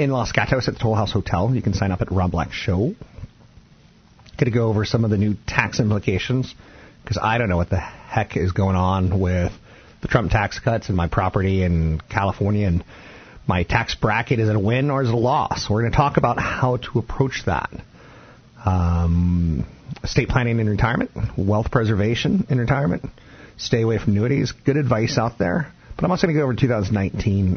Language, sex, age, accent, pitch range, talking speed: English, male, 40-59, American, 100-130 Hz, 200 wpm